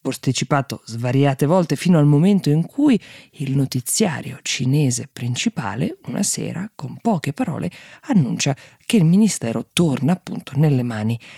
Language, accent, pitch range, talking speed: Italian, native, 130-175 Hz, 130 wpm